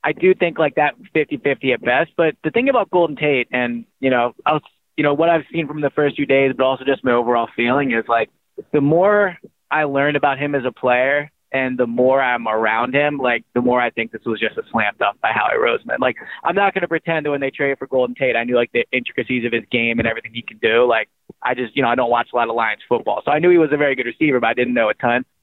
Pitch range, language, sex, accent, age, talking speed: 125-150 Hz, English, male, American, 20-39, 285 wpm